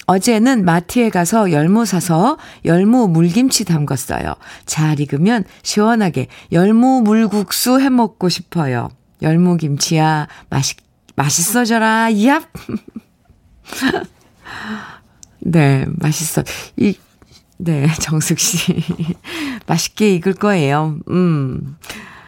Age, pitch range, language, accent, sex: 50-69, 155-225 Hz, Korean, native, female